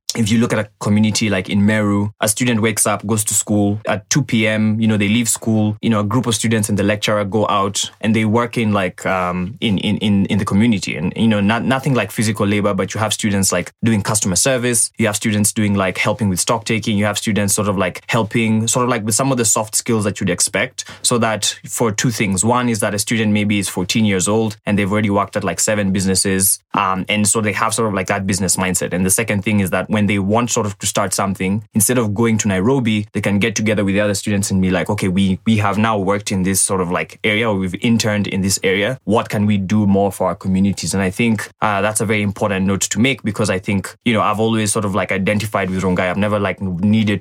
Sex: male